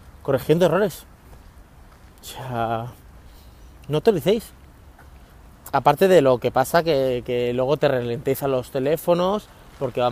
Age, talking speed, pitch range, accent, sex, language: 30-49, 130 wpm, 125-180 Hz, Spanish, male, Spanish